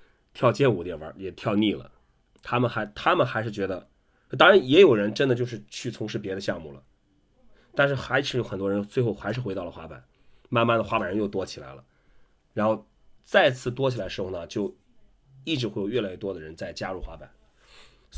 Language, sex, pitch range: Chinese, male, 100-125 Hz